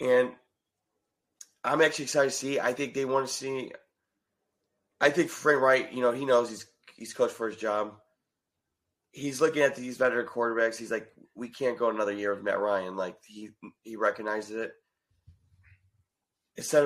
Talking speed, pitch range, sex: 175 wpm, 110-130 Hz, male